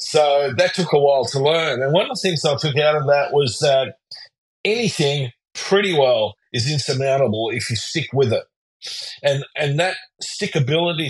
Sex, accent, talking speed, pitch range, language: male, Australian, 180 wpm, 125-160 Hz, English